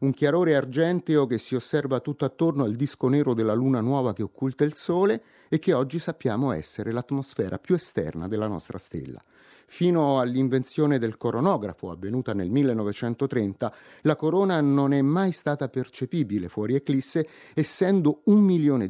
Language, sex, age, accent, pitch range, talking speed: Italian, male, 30-49, native, 125-170 Hz, 150 wpm